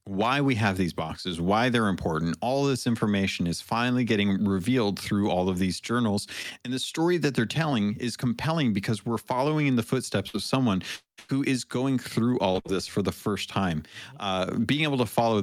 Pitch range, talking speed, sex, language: 95-120 Hz, 200 wpm, male, English